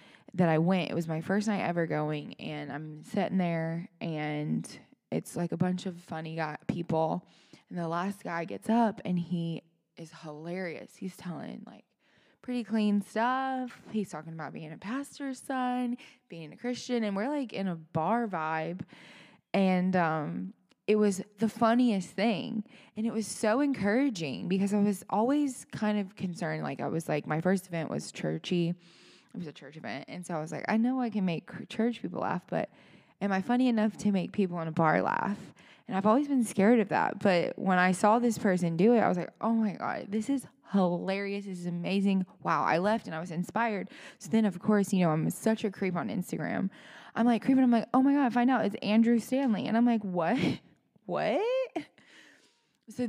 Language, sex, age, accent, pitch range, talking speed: English, female, 20-39, American, 170-230 Hz, 205 wpm